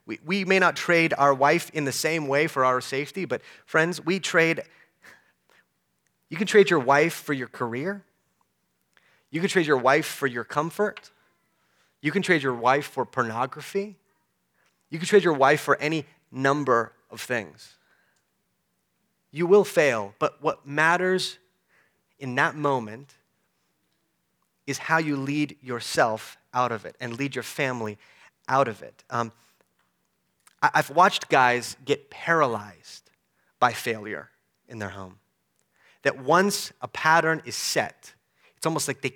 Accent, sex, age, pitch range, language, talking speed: American, male, 30-49, 125-165 Hz, English, 145 wpm